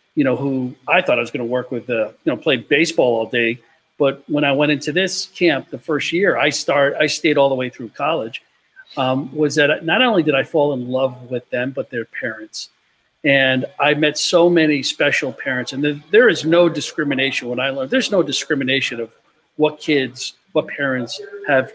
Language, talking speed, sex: English, 210 wpm, male